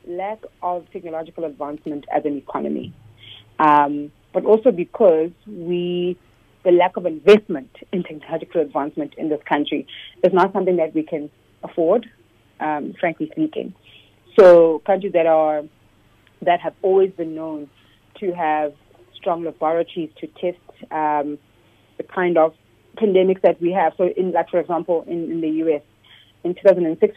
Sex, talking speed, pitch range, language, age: female, 145 wpm, 145-185 Hz, English, 30-49